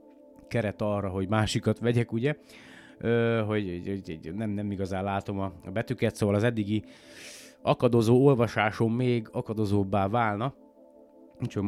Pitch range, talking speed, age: 95-115 Hz, 120 wpm, 30-49